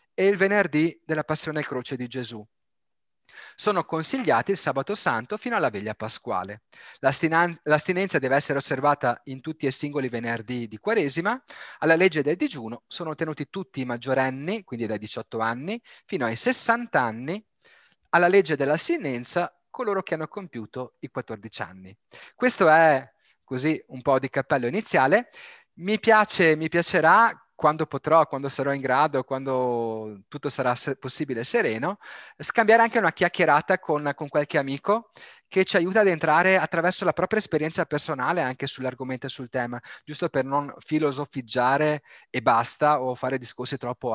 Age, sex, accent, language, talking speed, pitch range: 30-49, male, native, Italian, 150 wpm, 130-180 Hz